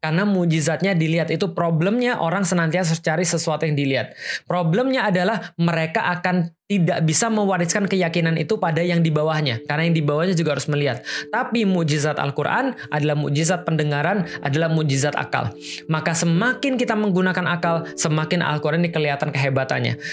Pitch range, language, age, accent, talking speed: 150-180 Hz, Indonesian, 20-39, native, 150 wpm